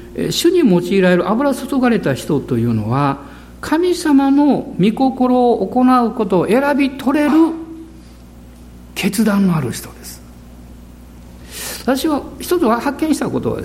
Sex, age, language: male, 60-79, Japanese